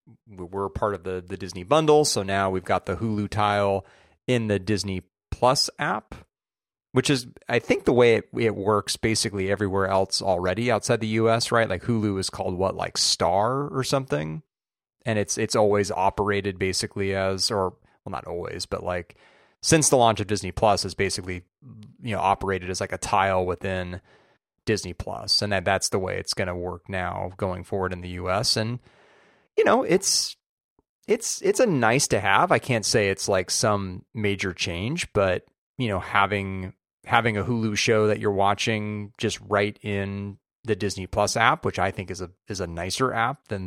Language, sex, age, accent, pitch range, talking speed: English, male, 30-49, American, 95-115 Hz, 185 wpm